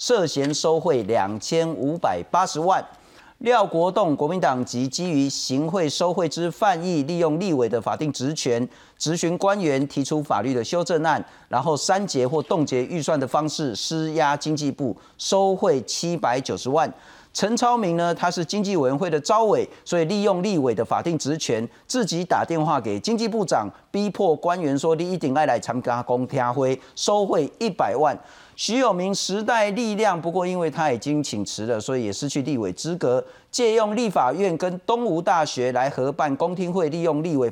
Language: Chinese